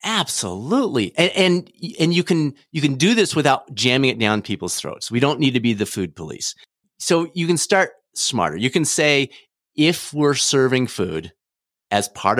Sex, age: male, 40-59